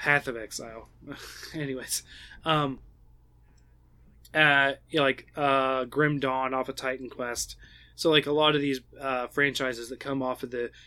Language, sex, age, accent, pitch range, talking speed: English, male, 20-39, American, 125-145 Hz, 160 wpm